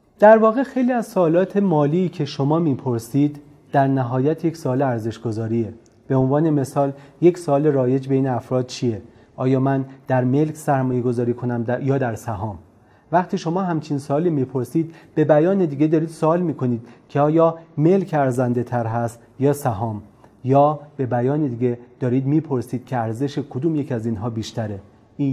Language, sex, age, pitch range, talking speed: Persian, male, 30-49, 120-150 Hz, 155 wpm